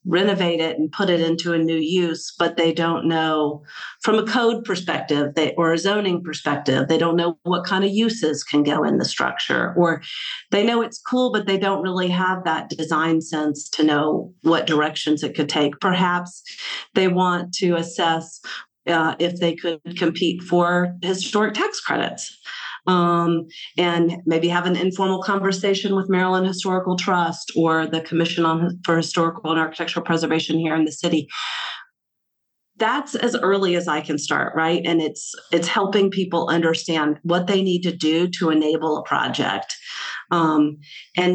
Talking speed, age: 170 wpm, 40-59